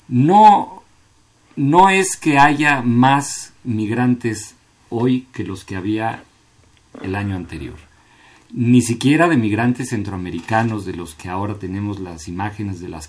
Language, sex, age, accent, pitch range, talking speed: Spanish, male, 40-59, Mexican, 95-120 Hz, 135 wpm